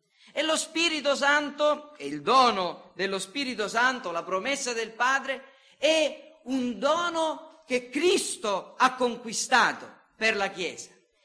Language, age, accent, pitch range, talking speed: Italian, 40-59, native, 215-275 Hz, 125 wpm